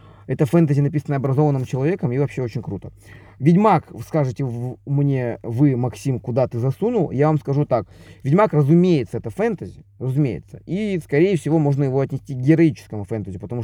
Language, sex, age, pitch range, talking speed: Russian, male, 20-39, 110-155 Hz, 160 wpm